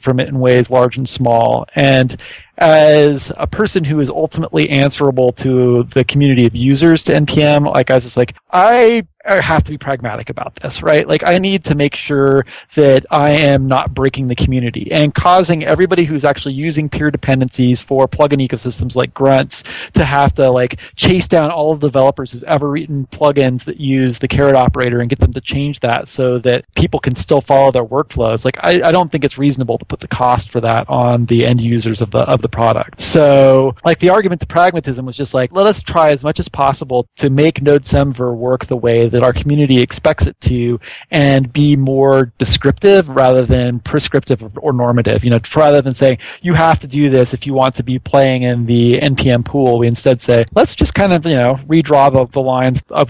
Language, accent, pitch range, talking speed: English, American, 125-150 Hz, 210 wpm